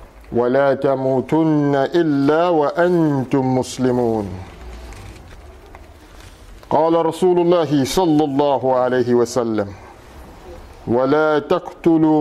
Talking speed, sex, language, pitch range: 70 wpm, male, English, 120-165 Hz